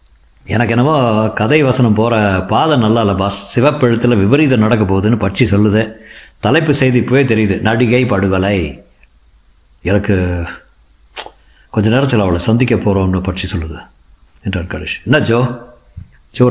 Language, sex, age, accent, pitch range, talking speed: Tamil, male, 50-69, native, 100-125 Hz, 115 wpm